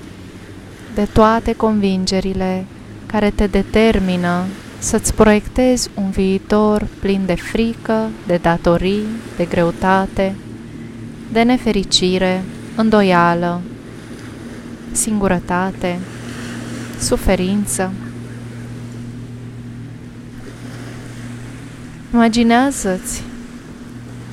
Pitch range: 125-210 Hz